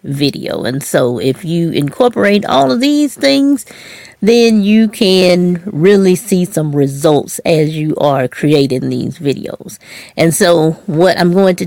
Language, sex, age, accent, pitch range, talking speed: English, female, 40-59, American, 150-200 Hz, 150 wpm